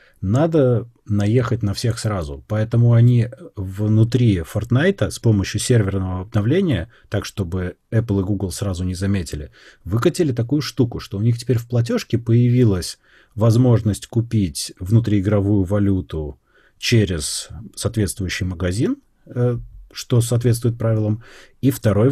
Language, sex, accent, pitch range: Russian, male, native, 100-125 Hz